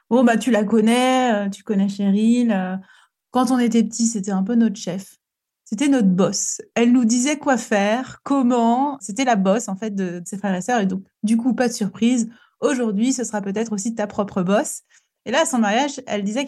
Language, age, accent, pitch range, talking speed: French, 30-49, French, 200-250 Hz, 220 wpm